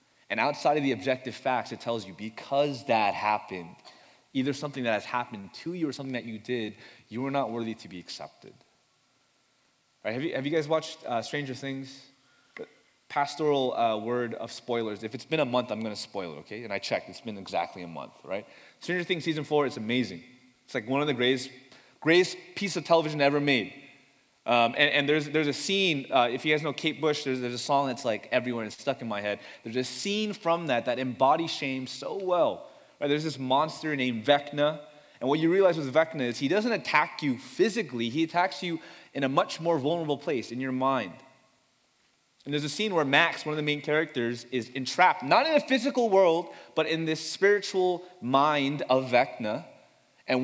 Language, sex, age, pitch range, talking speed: English, male, 20-39, 125-160 Hz, 210 wpm